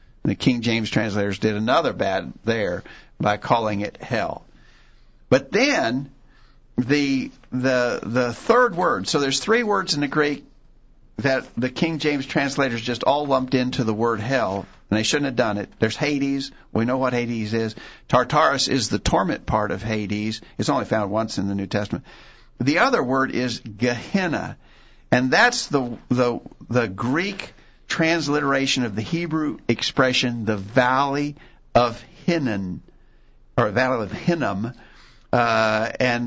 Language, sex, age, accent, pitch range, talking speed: English, male, 50-69, American, 110-140 Hz, 155 wpm